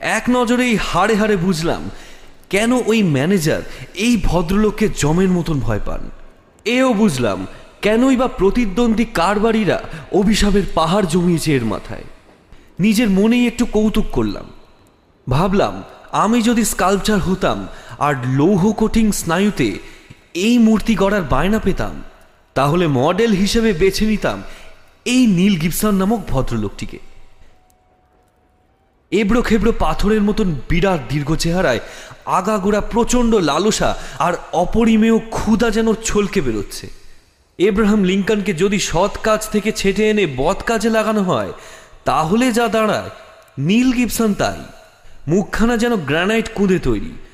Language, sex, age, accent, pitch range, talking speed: Bengali, male, 30-49, native, 160-220 Hz, 115 wpm